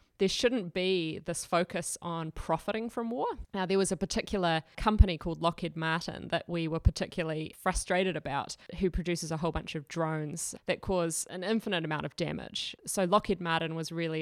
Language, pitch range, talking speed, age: English, 160-190 Hz, 180 wpm, 20-39